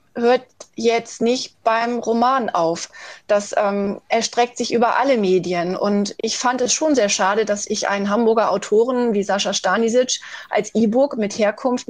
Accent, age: German, 30-49